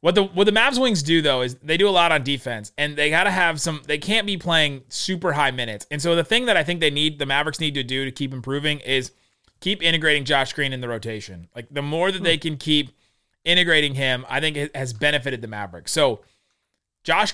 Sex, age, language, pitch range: male, 30-49, English, 130-165 Hz